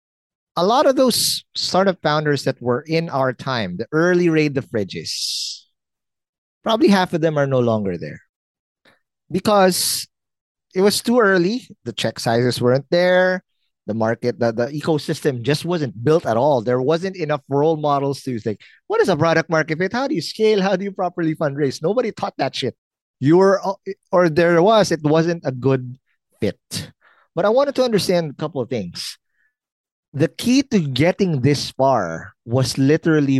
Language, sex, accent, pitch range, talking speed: English, male, Filipino, 120-170 Hz, 175 wpm